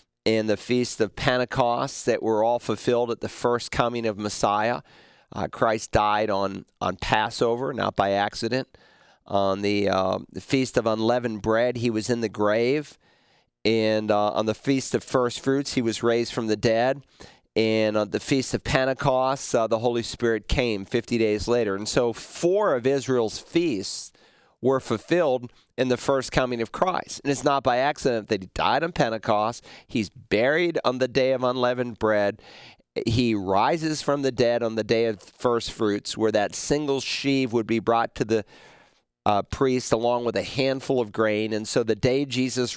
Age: 40-59